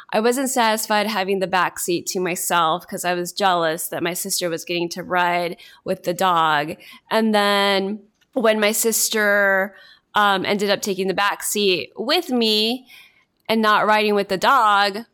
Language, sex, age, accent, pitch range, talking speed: English, female, 20-39, American, 190-250 Hz, 170 wpm